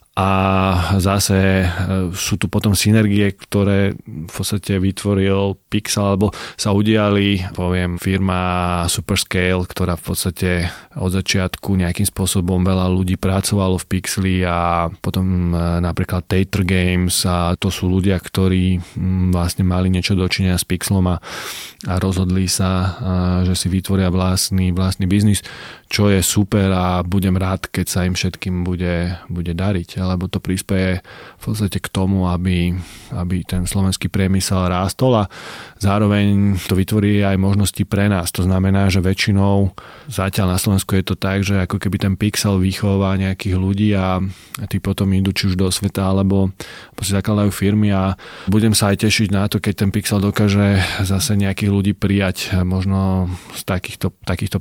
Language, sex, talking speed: Slovak, male, 150 wpm